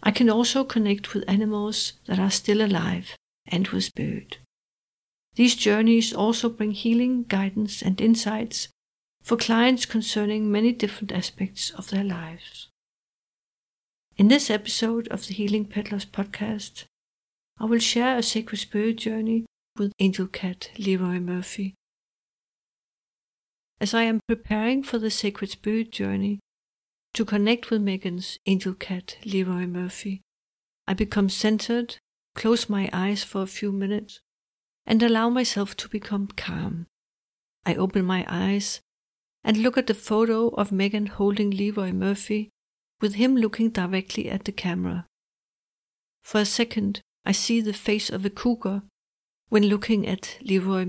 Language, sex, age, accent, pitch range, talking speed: English, female, 60-79, Danish, 195-225 Hz, 140 wpm